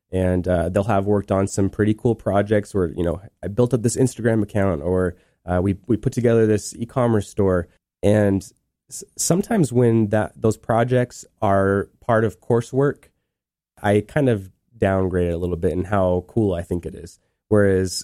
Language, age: English, 20-39